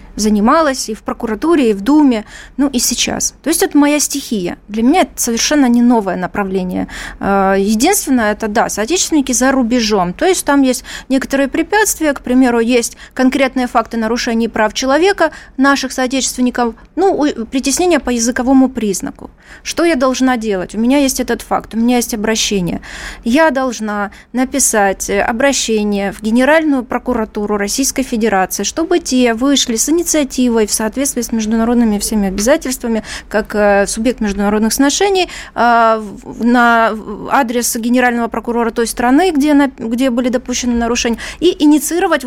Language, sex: Russian, female